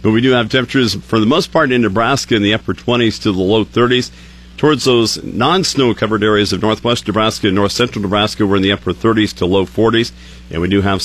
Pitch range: 95-115 Hz